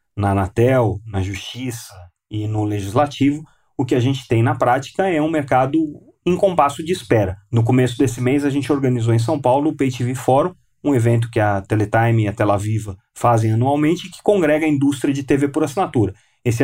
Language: Portuguese